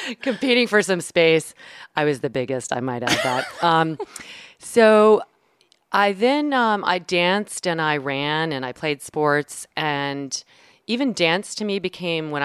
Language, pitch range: English, 130-170 Hz